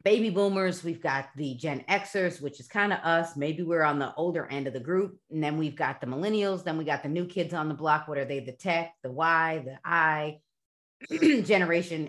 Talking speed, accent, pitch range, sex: 230 wpm, American, 155-200 Hz, female